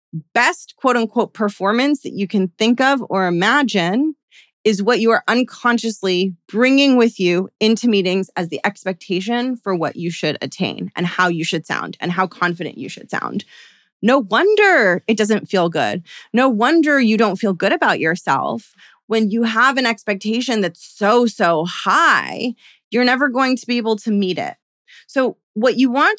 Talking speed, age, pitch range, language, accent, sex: 175 wpm, 30-49, 185-245 Hz, English, American, female